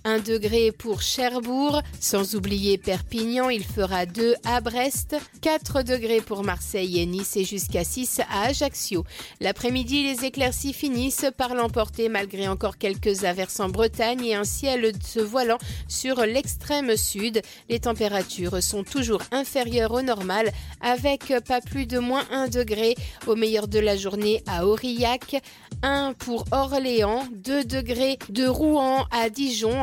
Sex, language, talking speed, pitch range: female, French, 145 wpm, 215-260 Hz